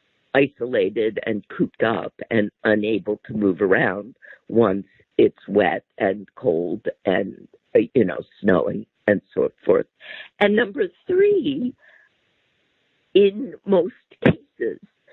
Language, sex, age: English, female, 50-69